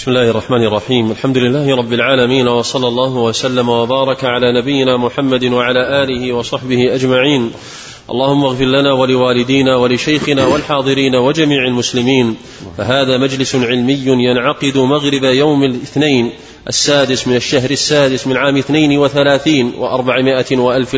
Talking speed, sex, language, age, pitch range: 125 wpm, male, Arabic, 30-49, 130-155 Hz